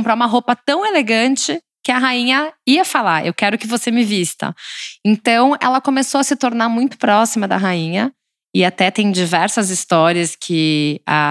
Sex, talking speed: female, 175 wpm